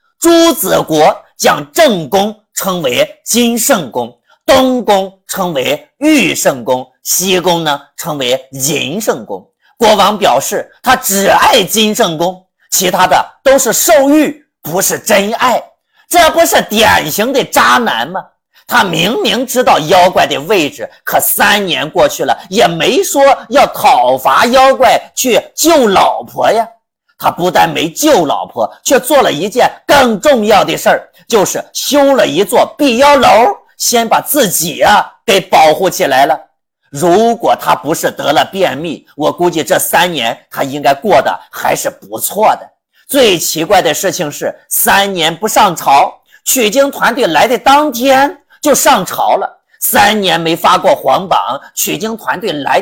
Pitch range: 195-295 Hz